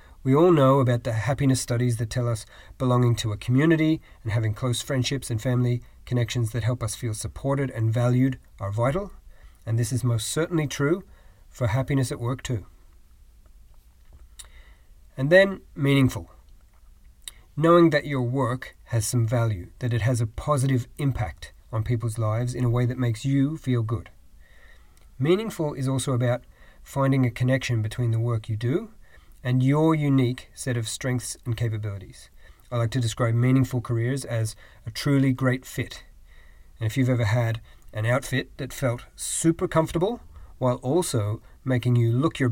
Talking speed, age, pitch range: 165 wpm, 40-59, 115-135 Hz